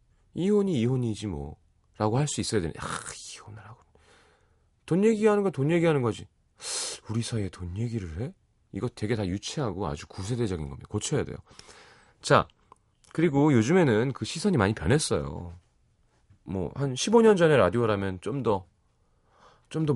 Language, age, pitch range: Korean, 30-49, 100-155 Hz